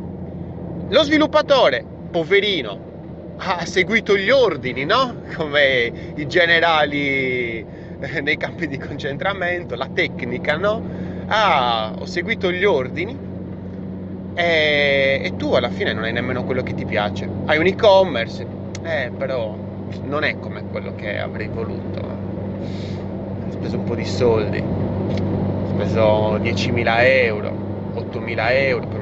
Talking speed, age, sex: 120 wpm, 30-49, male